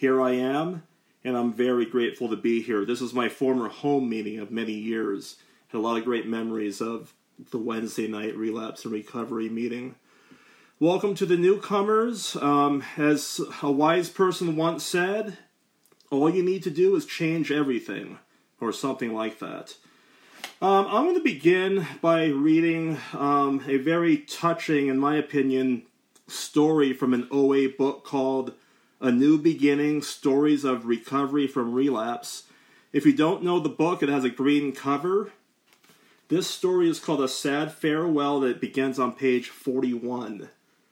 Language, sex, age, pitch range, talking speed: English, male, 30-49, 125-165 Hz, 160 wpm